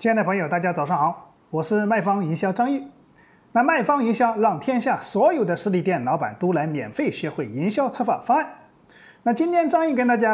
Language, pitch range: Chinese, 180-280 Hz